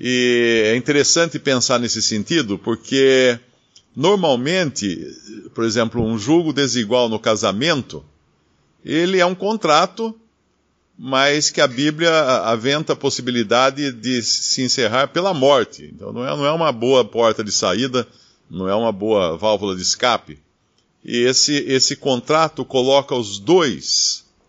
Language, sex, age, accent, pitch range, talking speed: Portuguese, male, 50-69, Brazilian, 115-160 Hz, 130 wpm